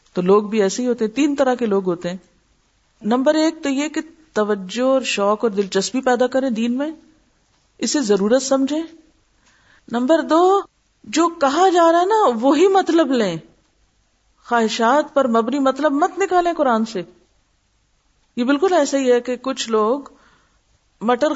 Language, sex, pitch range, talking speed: Urdu, female, 210-280 Hz, 165 wpm